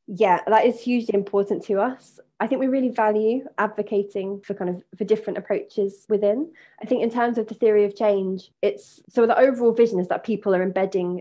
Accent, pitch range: British, 185-220 Hz